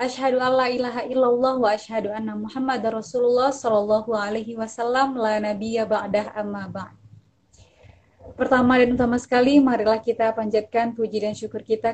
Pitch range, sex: 215-250 Hz, female